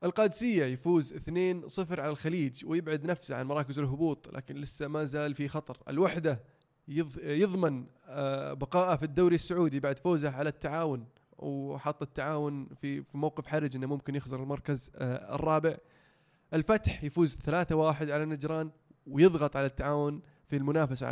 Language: Arabic